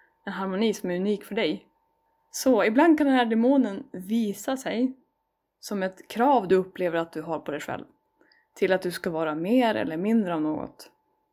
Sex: female